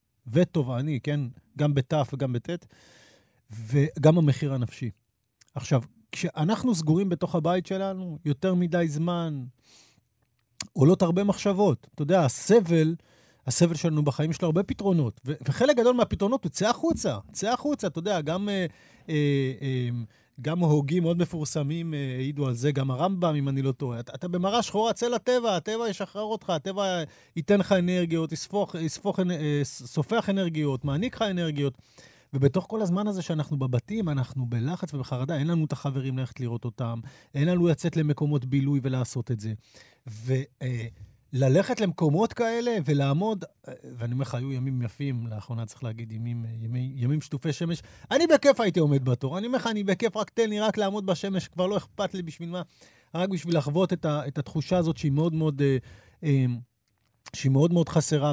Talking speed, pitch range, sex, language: 165 wpm, 130-185 Hz, male, Hebrew